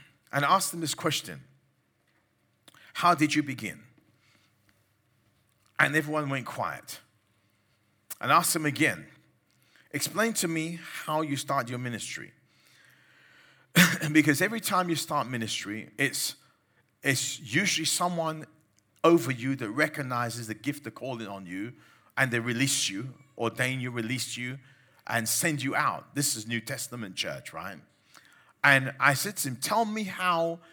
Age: 40-59